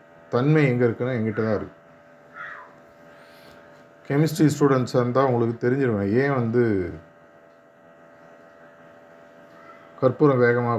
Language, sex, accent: Tamil, male, native